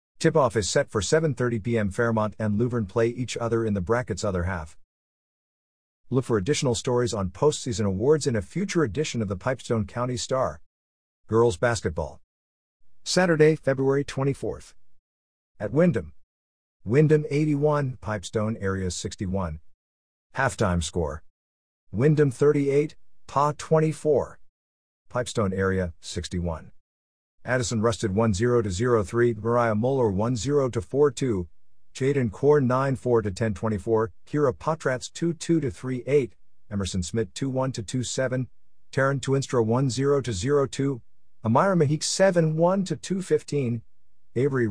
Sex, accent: male, American